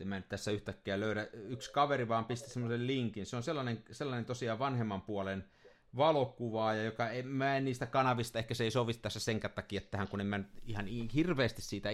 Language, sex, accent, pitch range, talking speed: Finnish, male, native, 105-140 Hz, 200 wpm